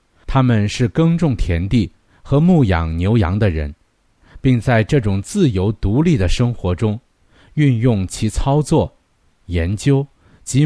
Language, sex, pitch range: Chinese, male, 90-130 Hz